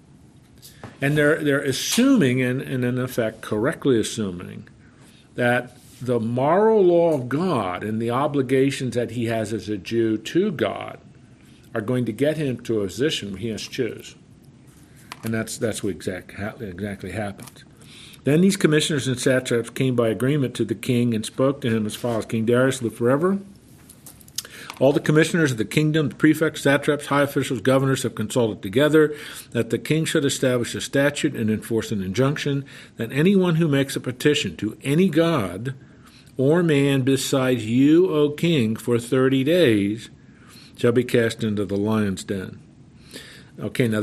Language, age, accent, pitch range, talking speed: English, 50-69, American, 115-145 Hz, 165 wpm